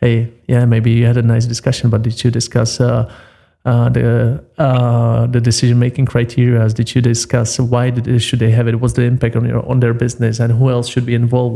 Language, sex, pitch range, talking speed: English, male, 115-125 Hz, 220 wpm